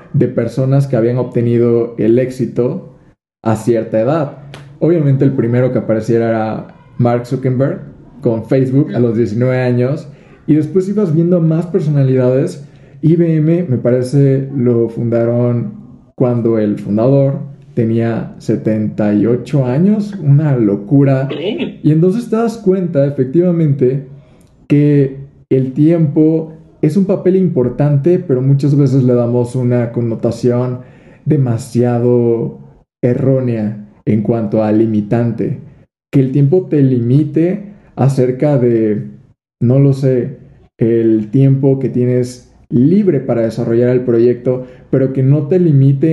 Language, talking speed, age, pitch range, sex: Spanish, 120 wpm, 20-39, 120-150 Hz, male